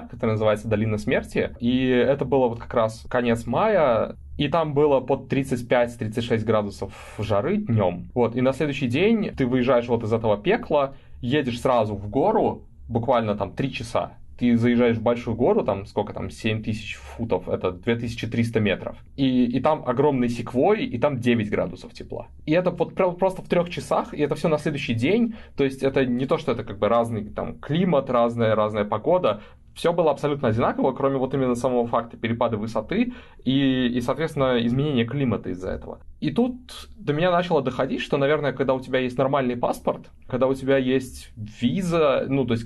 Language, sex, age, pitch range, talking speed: Russian, male, 20-39, 115-140 Hz, 185 wpm